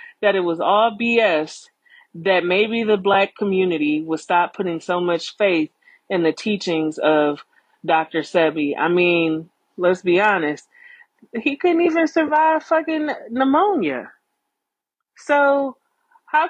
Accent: American